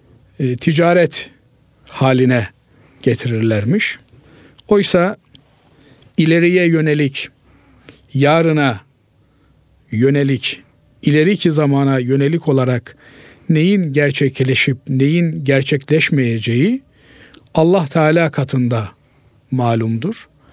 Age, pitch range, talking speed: 50-69, 130-170 Hz, 60 wpm